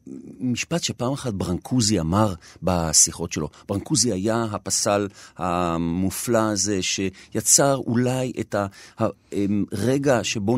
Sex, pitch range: male, 105-155 Hz